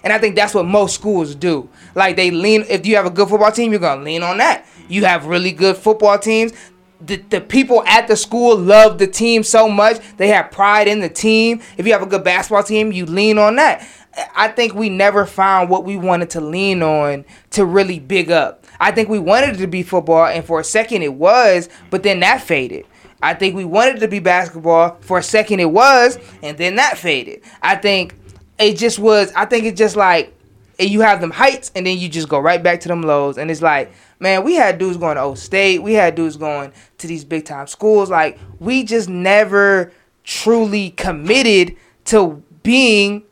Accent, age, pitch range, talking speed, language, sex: American, 20-39, 175-215 Hz, 225 wpm, English, male